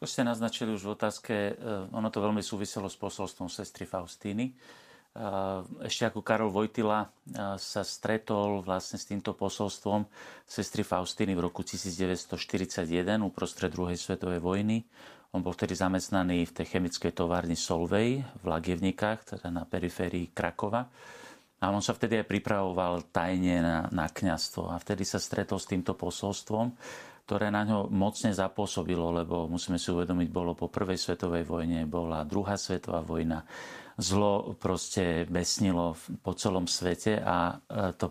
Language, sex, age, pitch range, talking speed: Slovak, male, 40-59, 85-105 Hz, 145 wpm